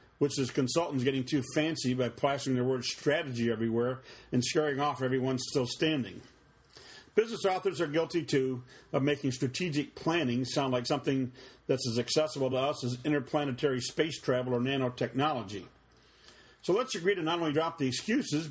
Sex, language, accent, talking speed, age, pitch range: male, English, American, 160 wpm, 50-69, 125-155 Hz